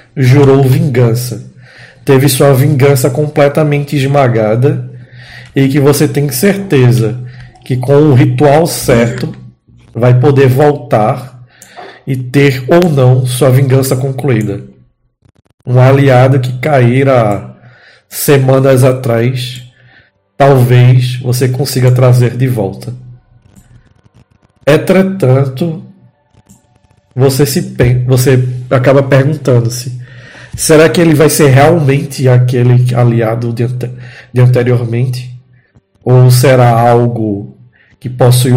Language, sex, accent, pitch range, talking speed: Portuguese, male, Brazilian, 120-135 Hz, 100 wpm